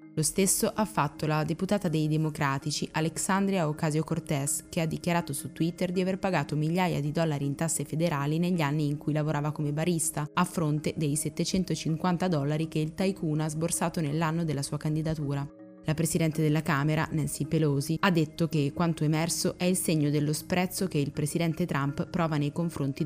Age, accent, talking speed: 20-39, native, 175 wpm